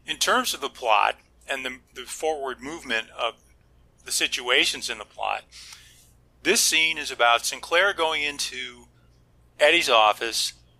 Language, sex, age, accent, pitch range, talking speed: English, male, 40-59, American, 120-155 Hz, 140 wpm